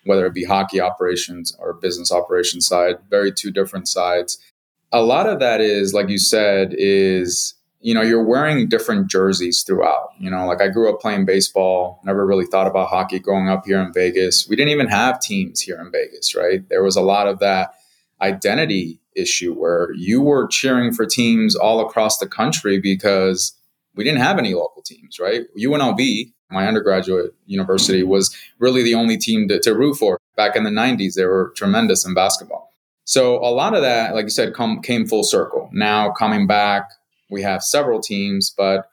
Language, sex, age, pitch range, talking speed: English, male, 20-39, 95-135 Hz, 190 wpm